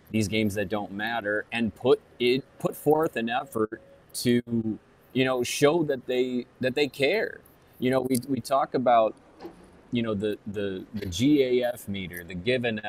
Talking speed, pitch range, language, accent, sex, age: 170 wpm, 105-125 Hz, English, American, male, 30-49